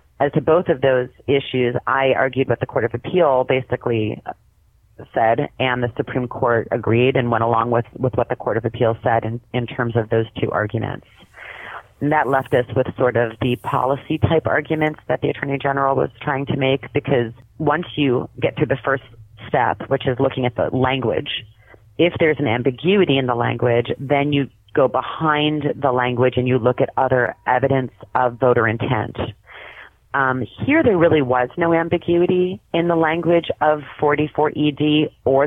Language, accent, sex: English, American, female